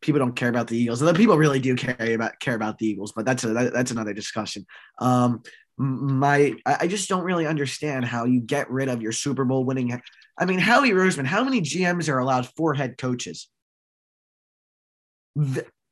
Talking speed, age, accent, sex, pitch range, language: 195 wpm, 20-39, American, male, 115-145 Hz, English